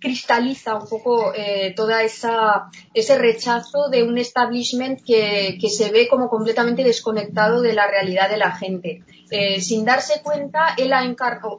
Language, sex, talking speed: Spanish, female, 160 wpm